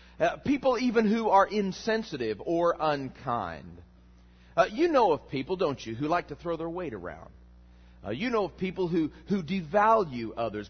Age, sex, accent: 40-59, male, American